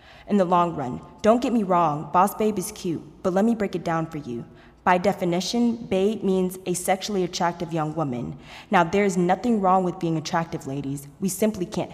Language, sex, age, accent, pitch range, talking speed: English, female, 20-39, American, 165-200 Hz, 200 wpm